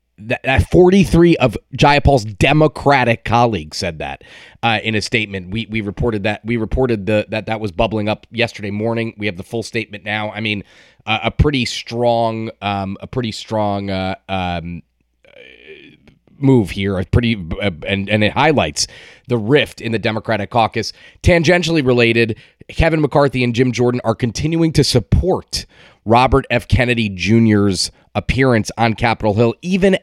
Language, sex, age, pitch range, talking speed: English, male, 30-49, 110-130 Hz, 160 wpm